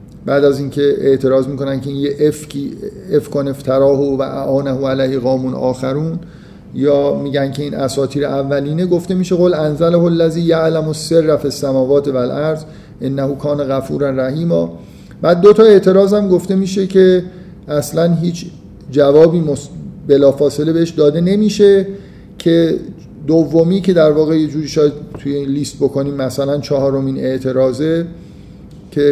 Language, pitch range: Persian, 135-170 Hz